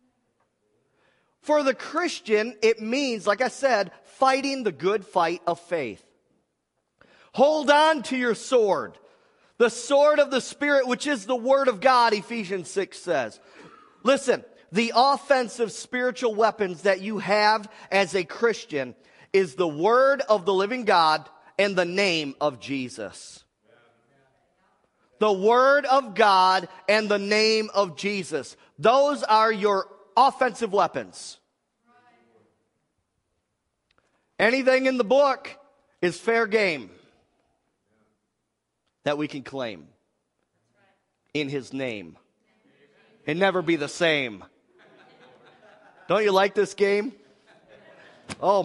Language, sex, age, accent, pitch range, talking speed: English, male, 40-59, American, 190-255 Hz, 115 wpm